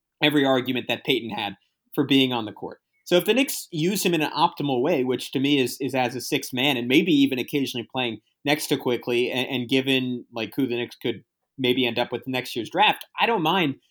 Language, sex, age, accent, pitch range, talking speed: English, male, 30-49, American, 125-160 Hz, 235 wpm